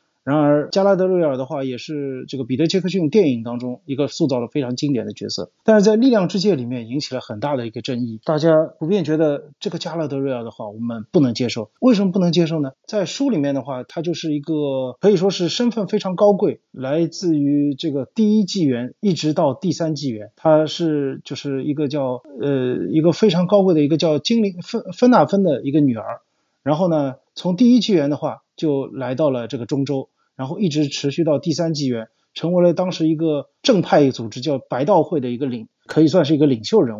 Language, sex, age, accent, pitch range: Chinese, male, 30-49, native, 140-185 Hz